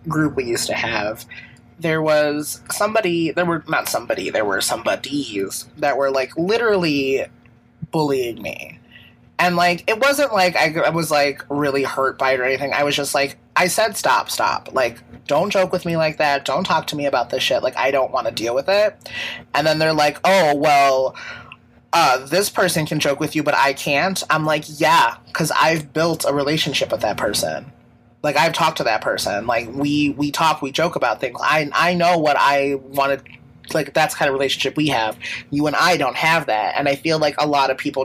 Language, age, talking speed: English, 30-49, 215 wpm